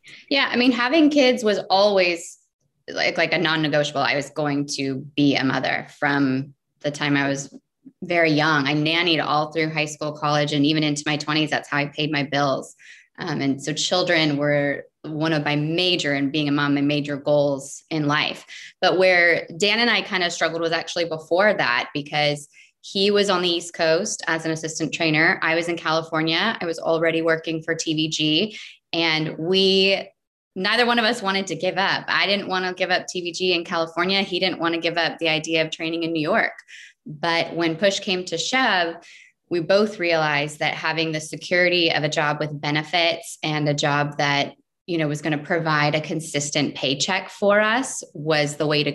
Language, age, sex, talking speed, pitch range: English, 20-39, female, 200 wpm, 150-175 Hz